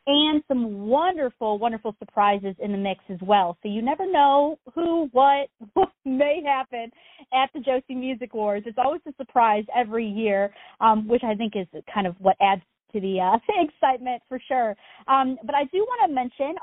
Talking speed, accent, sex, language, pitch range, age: 190 wpm, American, female, English, 225-300 Hz, 40-59